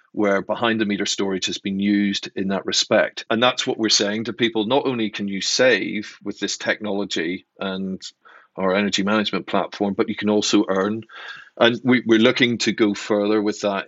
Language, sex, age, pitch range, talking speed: English, male, 40-59, 100-110 Hz, 180 wpm